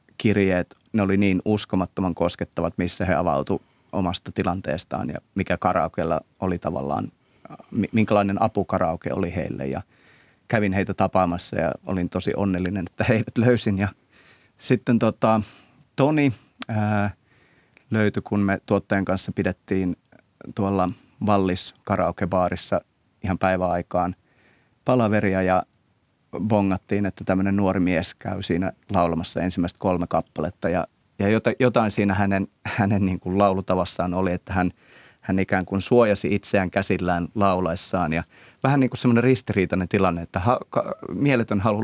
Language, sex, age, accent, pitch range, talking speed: Finnish, male, 30-49, native, 90-105 Hz, 130 wpm